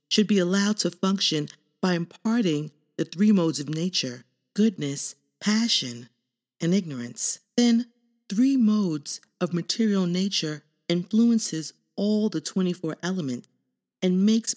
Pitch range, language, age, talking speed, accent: 145-205 Hz, English, 40-59, 120 wpm, American